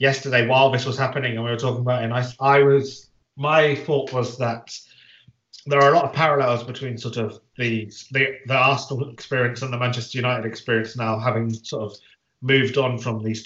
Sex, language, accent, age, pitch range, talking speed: male, English, British, 30-49, 115-140 Hz, 205 wpm